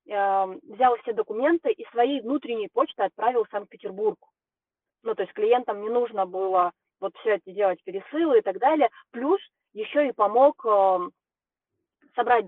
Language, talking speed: Russian, 145 wpm